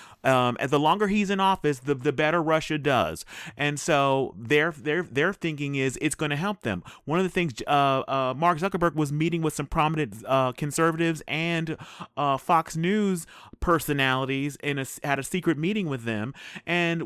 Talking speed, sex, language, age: 180 wpm, male, English, 30-49